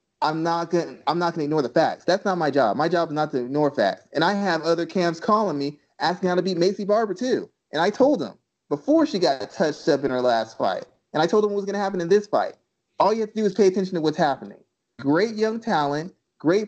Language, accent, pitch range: English, American, 140-180 Hz